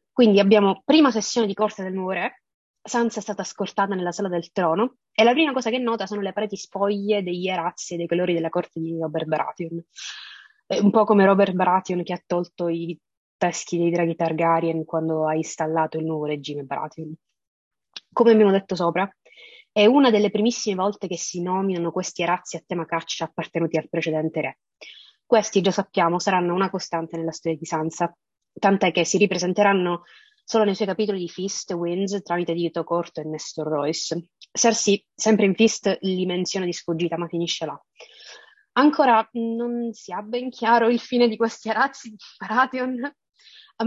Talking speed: 180 wpm